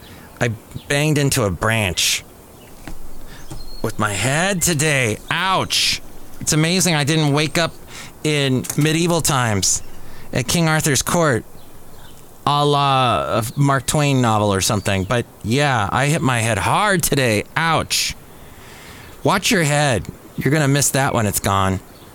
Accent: American